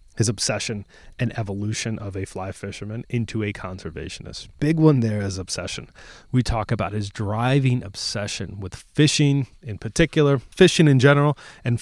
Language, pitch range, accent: English, 100-130 Hz, American